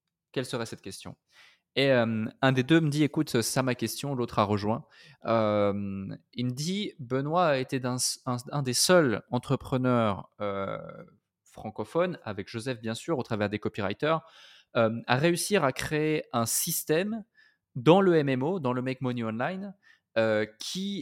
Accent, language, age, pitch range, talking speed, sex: French, French, 20-39, 115-155 Hz, 165 wpm, male